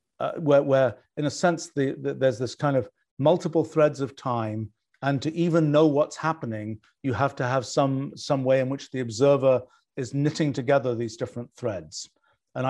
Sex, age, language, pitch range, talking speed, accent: male, 50-69, English, 125-150 Hz, 180 wpm, British